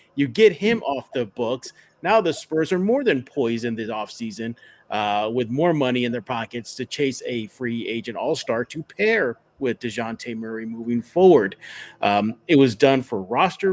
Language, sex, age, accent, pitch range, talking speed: English, male, 40-59, American, 120-175 Hz, 185 wpm